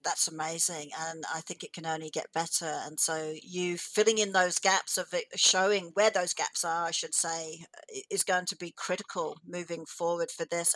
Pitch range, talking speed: 175-215 Hz, 200 wpm